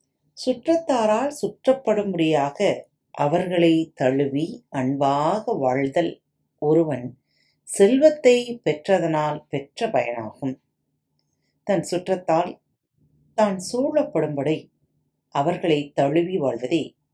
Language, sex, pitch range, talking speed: Tamil, female, 145-205 Hz, 65 wpm